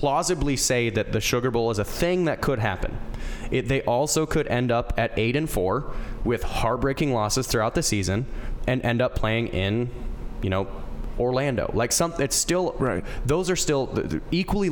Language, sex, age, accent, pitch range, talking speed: English, male, 20-39, American, 115-140 Hz, 190 wpm